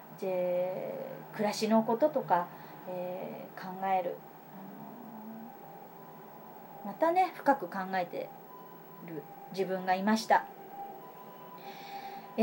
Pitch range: 195-275 Hz